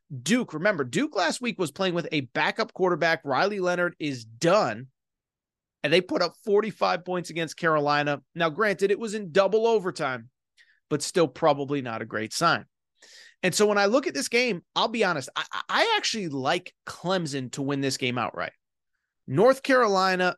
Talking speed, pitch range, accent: 175 wpm, 145-195 Hz, American